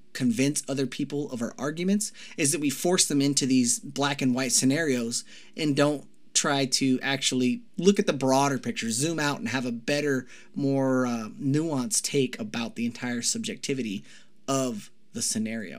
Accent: American